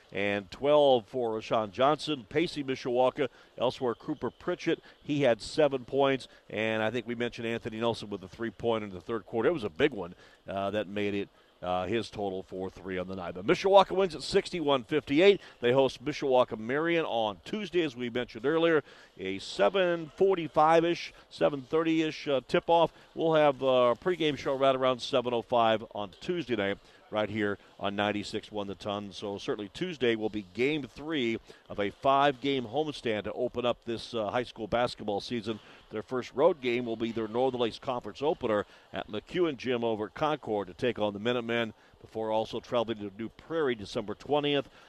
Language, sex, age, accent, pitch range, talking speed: English, male, 50-69, American, 110-140 Hz, 180 wpm